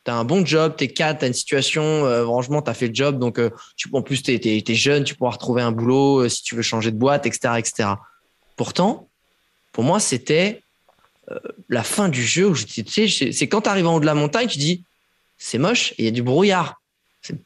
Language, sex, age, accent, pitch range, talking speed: French, male, 20-39, French, 115-150 Hz, 245 wpm